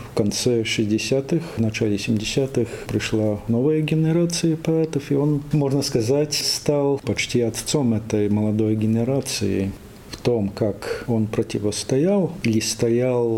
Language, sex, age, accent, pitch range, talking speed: Russian, male, 50-69, native, 105-130 Hz, 120 wpm